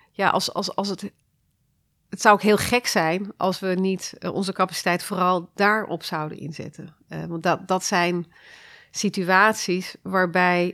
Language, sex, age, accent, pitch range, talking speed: Dutch, female, 40-59, Dutch, 175-200 Hz, 150 wpm